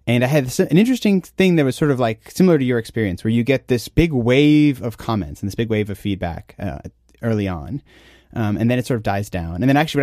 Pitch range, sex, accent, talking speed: 105-140 Hz, male, American, 255 wpm